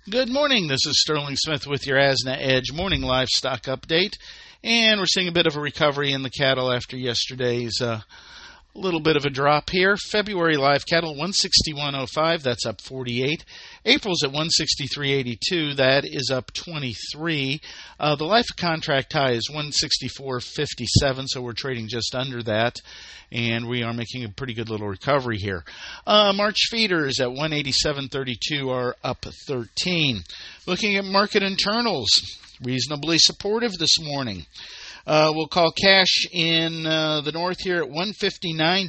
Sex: male